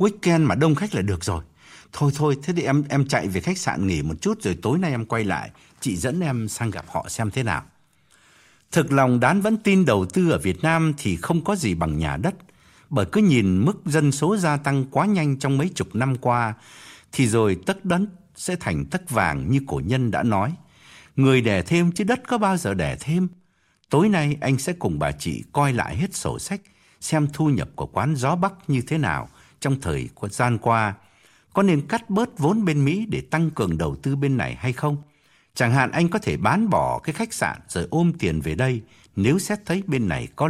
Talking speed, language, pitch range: 225 wpm, Vietnamese, 110-170 Hz